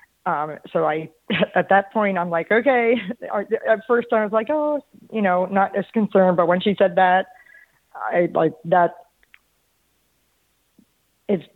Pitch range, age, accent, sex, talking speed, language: 170-195 Hz, 30-49, American, female, 150 wpm, English